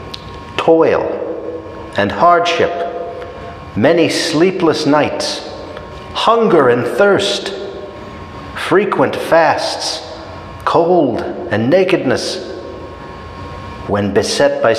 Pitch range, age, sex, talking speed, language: 105-165 Hz, 50-69, male, 70 wpm, English